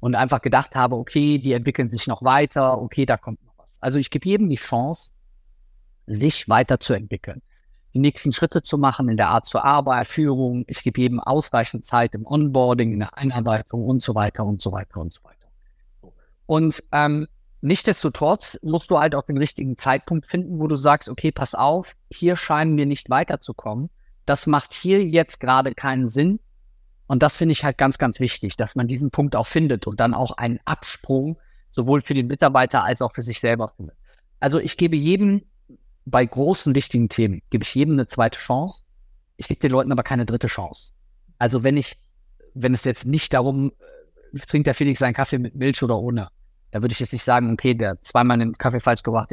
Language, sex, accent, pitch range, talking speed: German, male, German, 115-145 Hz, 200 wpm